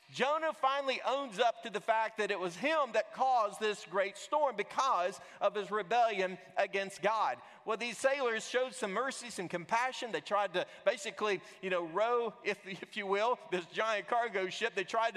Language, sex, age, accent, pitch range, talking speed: English, male, 40-59, American, 200-260 Hz, 185 wpm